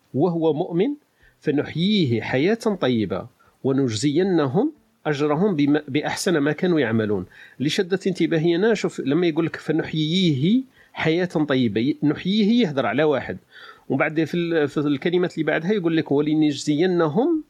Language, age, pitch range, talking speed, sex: Arabic, 40-59, 130-170 Hz, 120 wpm, male